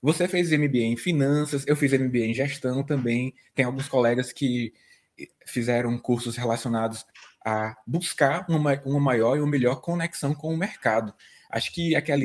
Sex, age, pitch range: male, 20-39, 120-145 Hz